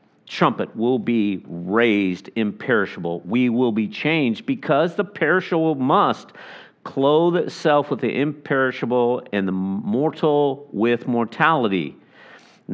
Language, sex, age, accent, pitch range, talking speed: English, male, 50-69, American, 115-160 Hz, 115 wpm